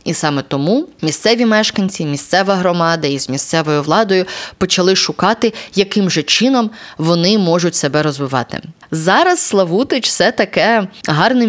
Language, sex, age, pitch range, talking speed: Ukrainian, female, 20-39, 160-220 Hz, 130 wpm